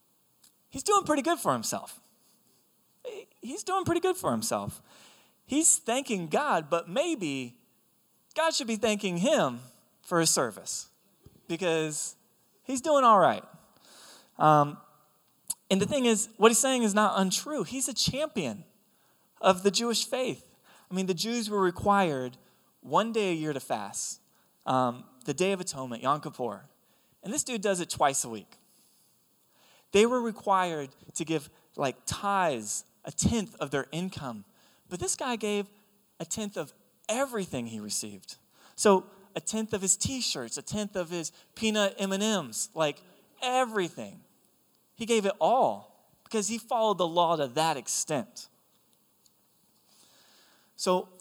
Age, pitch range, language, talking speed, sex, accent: 20-39, 155-230 Hz, English, 145 wpm, male, American